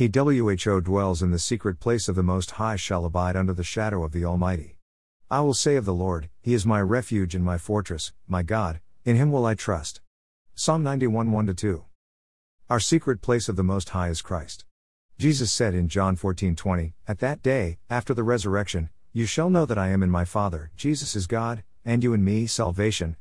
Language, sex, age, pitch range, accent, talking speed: English, male, 50-69, 90-115 Hz, American, 205 wpm